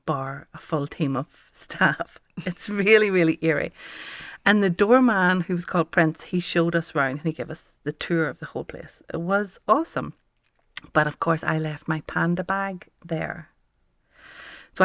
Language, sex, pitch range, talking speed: English, female, 155-190 Hz, 180 wpm